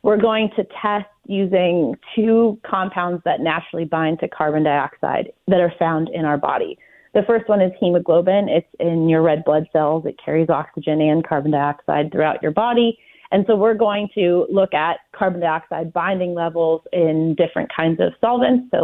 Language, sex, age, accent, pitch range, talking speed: English, female, 30-49, American, 160-195 Hz, 180 wpm